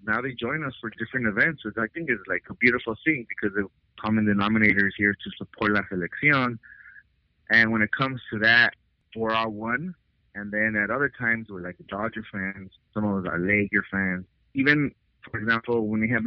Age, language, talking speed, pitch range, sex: 30-49, English, 205 wpm, 100-115 Hz, male